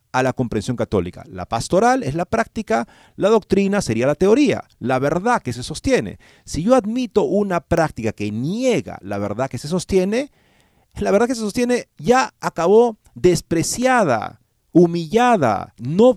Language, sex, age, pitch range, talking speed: Spanish, male, 40-59, 130-215 Hz, 150 wpm